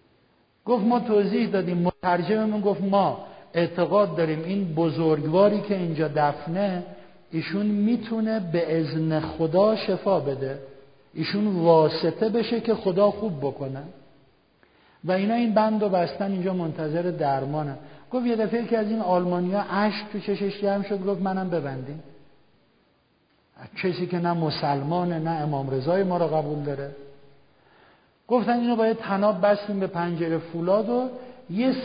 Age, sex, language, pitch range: 50-69, male, Persian, 165-220 Hz